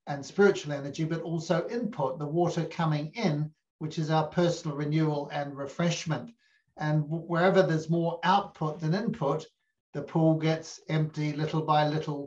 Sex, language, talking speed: male, English, 150 wpm